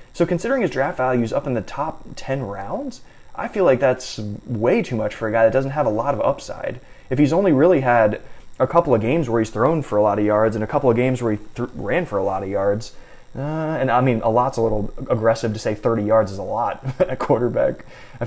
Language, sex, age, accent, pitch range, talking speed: English, male, 20-39, American, 115-145 Hz, 255 wpm